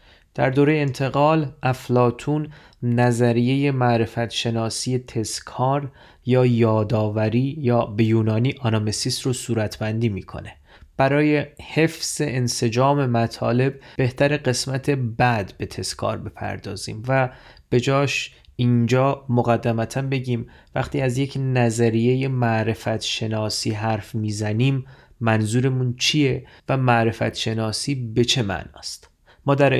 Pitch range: 110-135 Hz